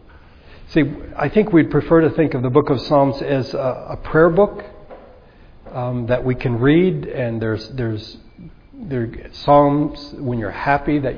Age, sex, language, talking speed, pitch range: 60-79, male, English, 170 wpm, 115-150 Hz